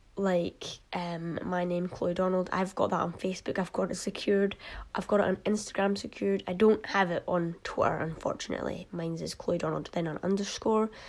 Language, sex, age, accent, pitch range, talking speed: English, female, 20-39, British, 180-205 Hz, 190 wpm